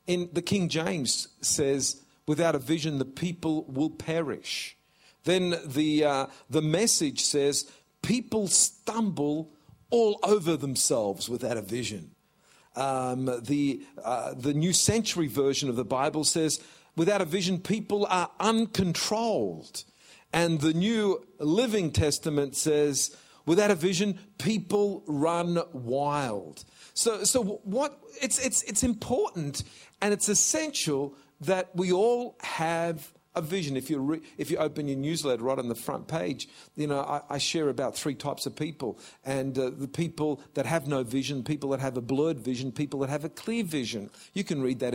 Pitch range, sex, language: 140-205 Hz, male, English